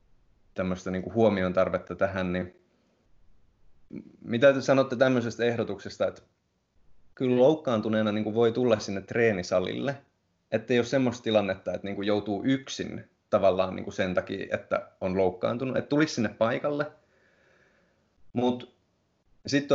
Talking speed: 110 wpm